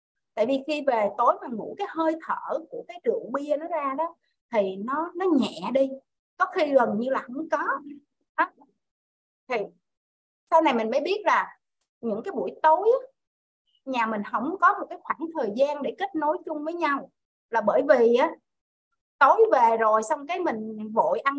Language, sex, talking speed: Vietnamese, female, 190 wpm